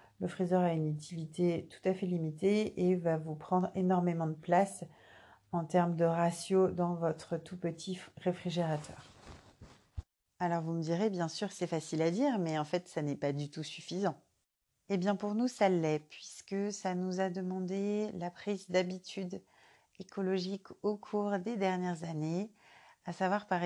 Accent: French